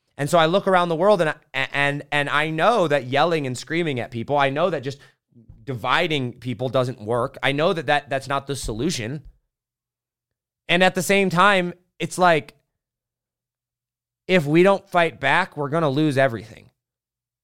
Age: 30-49